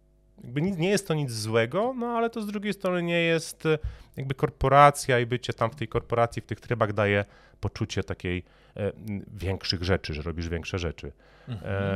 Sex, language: male, Polish